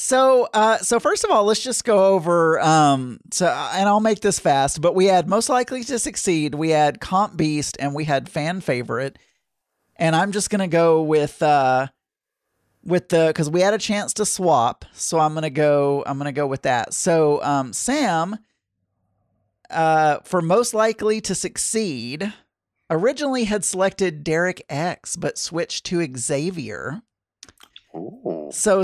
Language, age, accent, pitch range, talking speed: English, 40-59, American, 140-200 Hz, 160 wpm